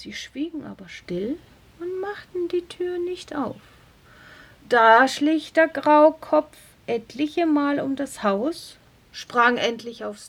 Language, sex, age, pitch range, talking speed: German, female, 50-69, 210-335 Hz, 130 wpm